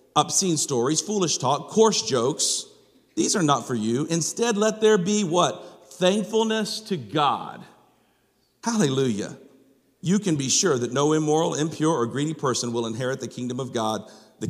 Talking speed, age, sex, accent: 155 wpm, 50-69, male, American